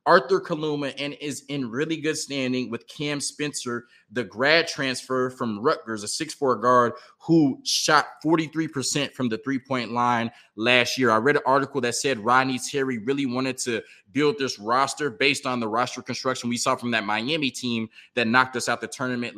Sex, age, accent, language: male, 20-39, American, English